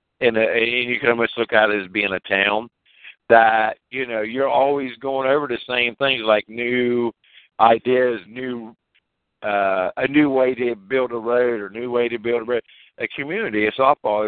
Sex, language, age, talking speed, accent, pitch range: male, English, 50-69, 185 wpm, American, 100-120 Hz